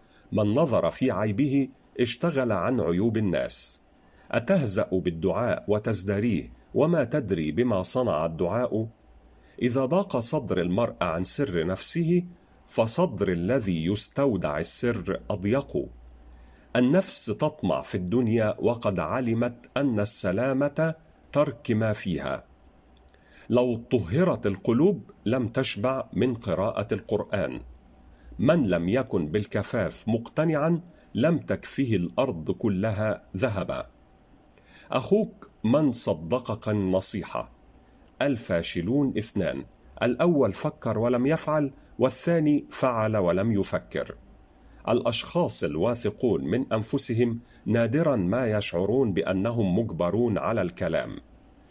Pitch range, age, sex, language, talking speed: 95-135 Hz, 50-69, male, Arabic, 95 wpm